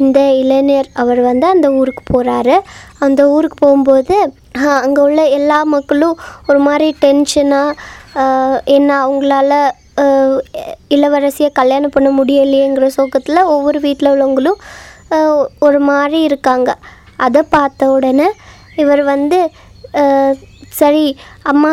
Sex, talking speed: male, 100 wpm